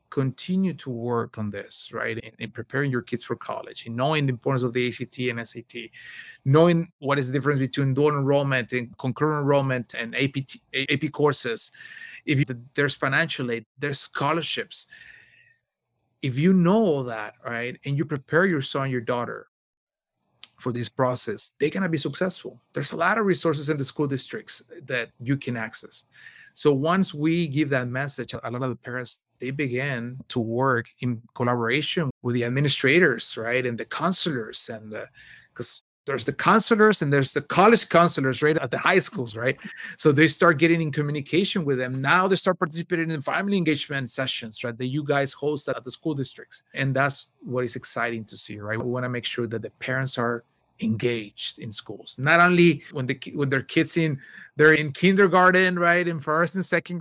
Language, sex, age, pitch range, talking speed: English, male, 30-49, 125-165 Hz, 190 wpm